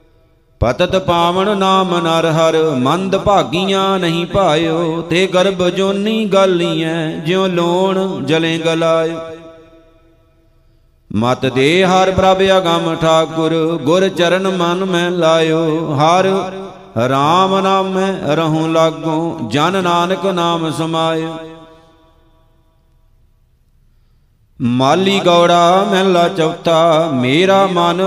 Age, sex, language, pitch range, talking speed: 50-69, male, Punjabi, 160-190 Hz, 95 wpm